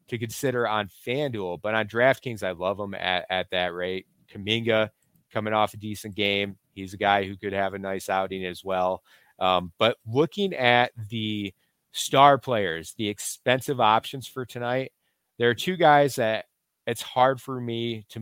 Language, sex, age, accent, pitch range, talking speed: English, male, 30-49, American, 100-135 Hz, 175 wpm